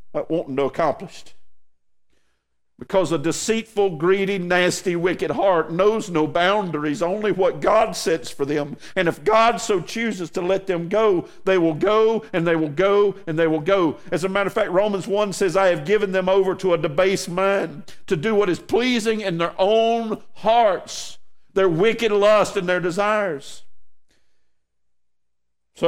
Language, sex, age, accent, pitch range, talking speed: English, male, 50-69, American, 165-200 Hz, 165 wpm